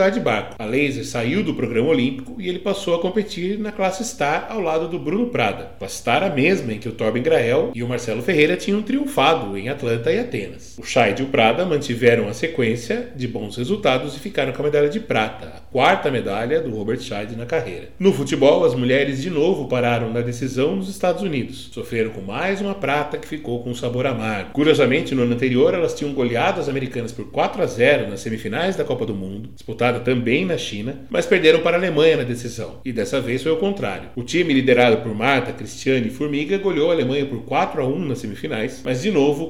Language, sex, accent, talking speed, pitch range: Portuguese, male, Brazilian, 215 wpm, 120-165 Hz